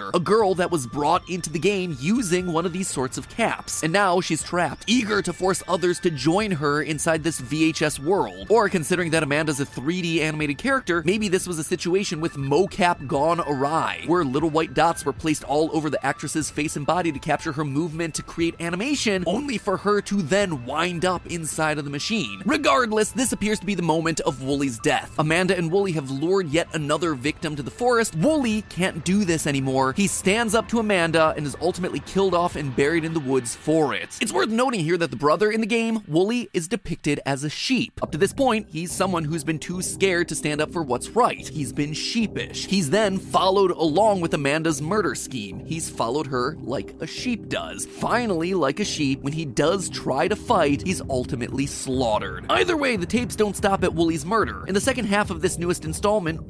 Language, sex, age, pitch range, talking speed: English, male, 30-49, 155-195 Hz, 215 wpm